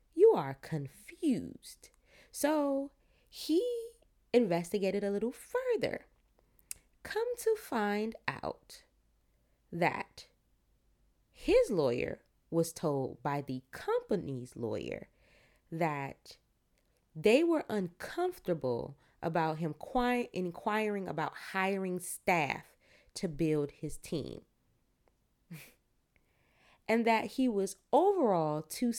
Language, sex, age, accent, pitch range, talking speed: English, female, 20-39, American, 145-215 Hz, 85 wpm